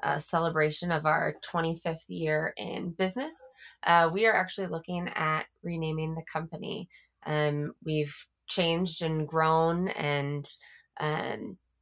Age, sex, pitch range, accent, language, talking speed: 20-39, female, 150-175 Hz, American, English, 120 wpm